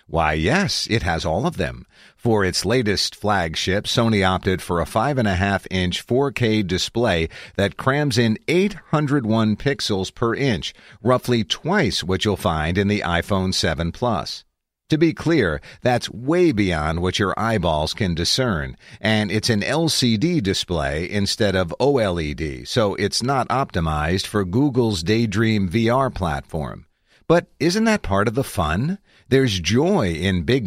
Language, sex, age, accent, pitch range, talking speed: English, male, 50-69, American, 95-135 Hz, 145 wpm